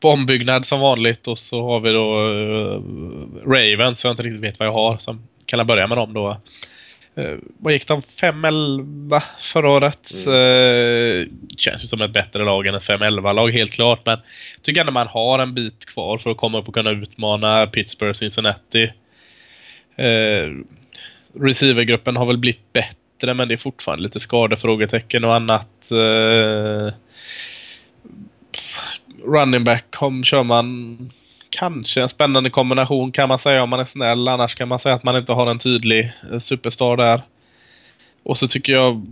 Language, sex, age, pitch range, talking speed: Swedish, male, 20-39, 110-125 Hz, 165 wpm